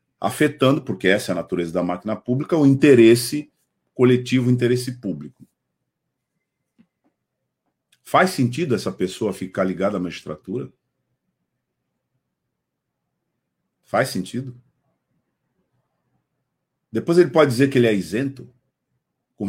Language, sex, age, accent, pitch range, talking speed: Portuguese, male, 50-69, Brazilian, 110-170 Hz, 105 wpm